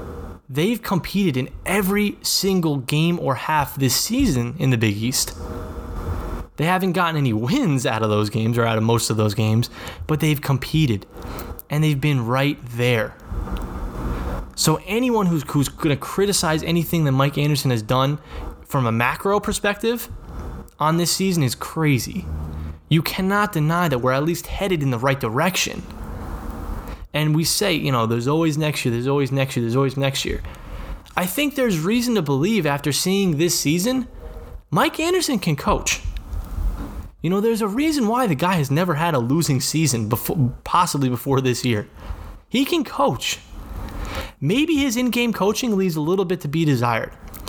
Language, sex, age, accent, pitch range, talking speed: English, male, 20-39, American, 110-175 Hz, 170 wpm